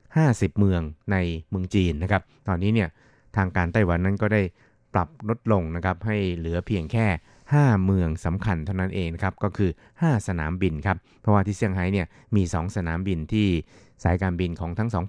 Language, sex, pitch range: Thai, male, 85-105 Hz